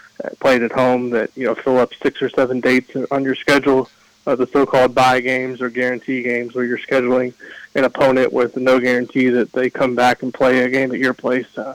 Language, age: English, 20-39